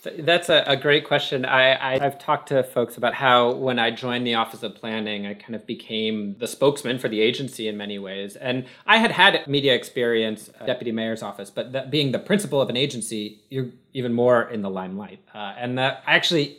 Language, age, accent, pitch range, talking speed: English, 30-49, American, 120-165 Hz, 205 wpm